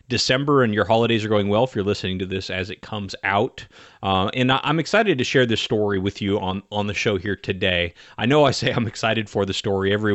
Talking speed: 250 wpm